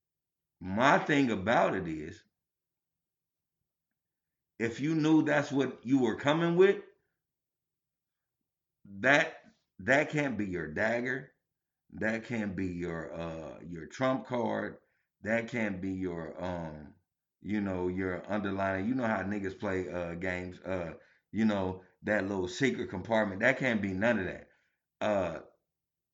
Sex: male